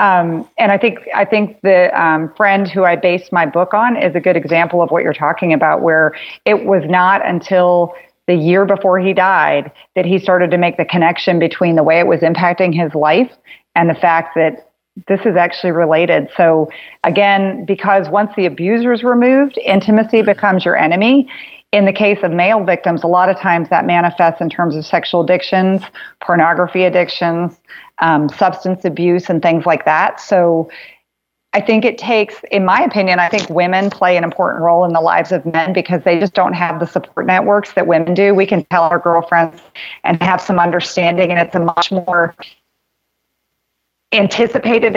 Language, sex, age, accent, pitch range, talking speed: English, female, 40-59, American, 170-195 Hz, 190 wpm